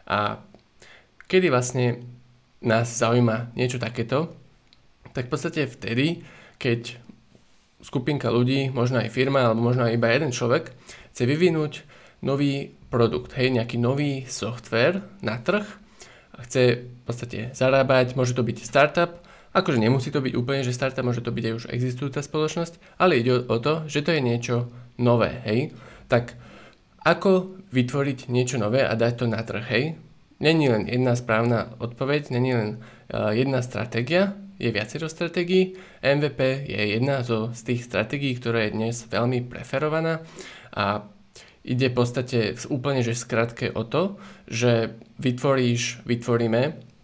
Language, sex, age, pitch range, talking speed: Slovak, male, 20-39, 120-145 Hz, 145 wpm